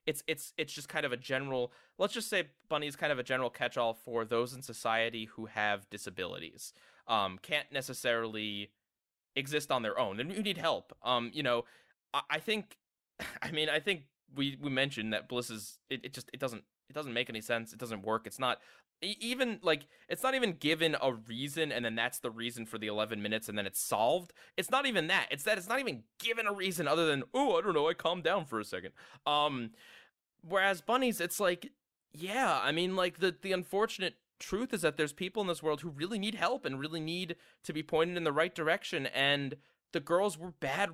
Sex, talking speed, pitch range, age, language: male, 220 wpm, 120-185 Hz, 20-39, English